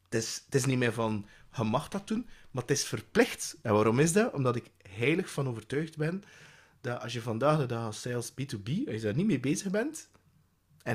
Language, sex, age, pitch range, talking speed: Dutch, male, 30-49, 115-155 Hz, 230 wpm